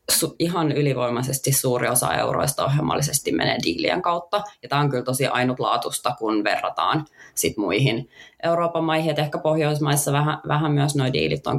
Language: Finnish